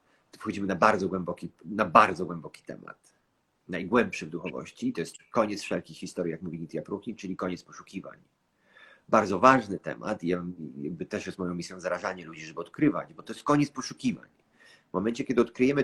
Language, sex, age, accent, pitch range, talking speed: Polish, male, 40-59, native, 95-125 Hz, 165 wpm